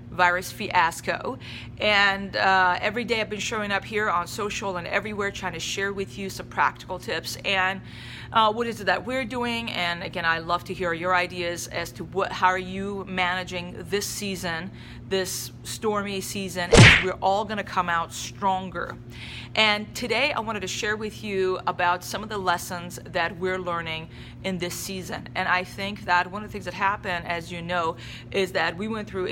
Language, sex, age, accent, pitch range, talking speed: English, female, 30-49, American, 170-195 Hz, 190 wpm